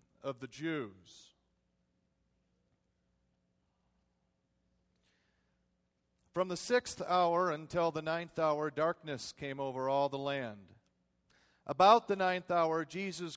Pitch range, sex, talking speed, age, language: 145-190 Hz, male, 100 wpm, 40-59, English